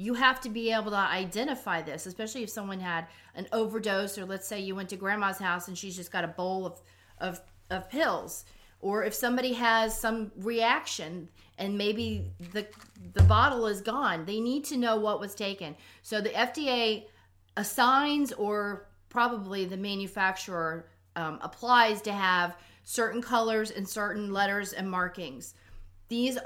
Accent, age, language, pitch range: American, 40-59, English, 185-240 Hz